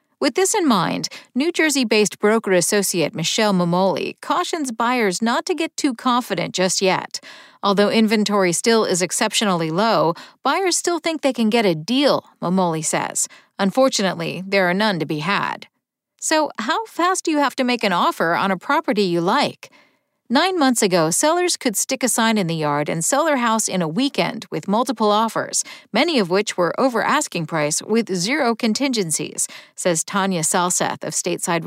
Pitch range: 180-255 Hz